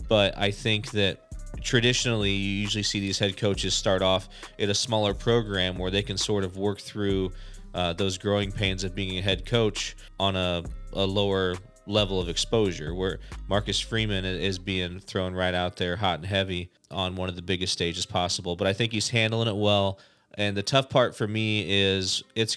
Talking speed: 195 wpm